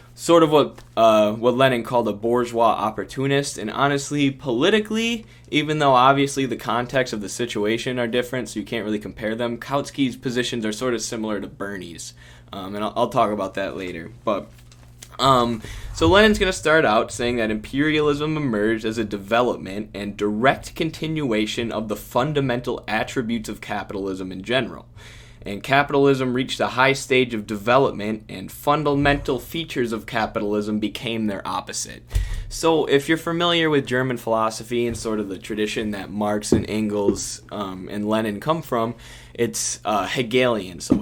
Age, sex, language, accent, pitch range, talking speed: 20-39, male, English, American, 105-135 Hz, 165 wpm